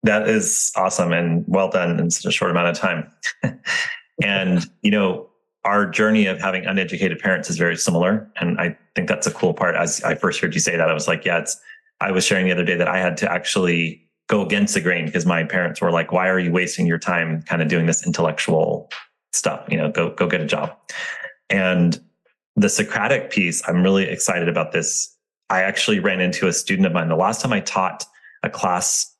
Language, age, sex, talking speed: English, 30-49, male, 220 wpm